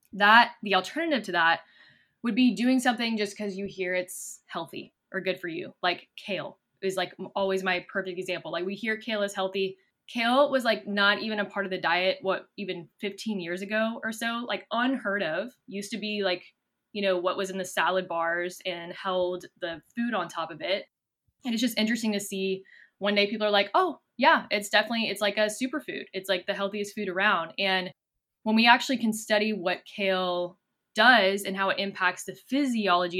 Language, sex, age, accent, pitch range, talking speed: English, female, 10-29, American, 185-220 Hz, 205 wpm